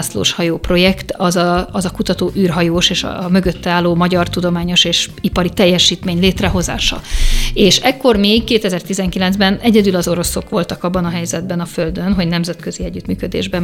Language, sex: Hungarian, female